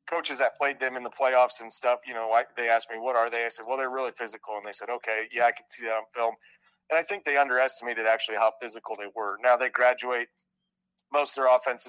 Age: 30-49